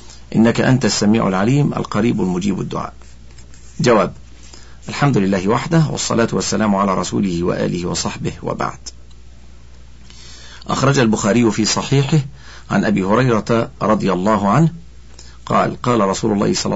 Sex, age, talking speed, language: male, 50-69, 120 wpm, Arabic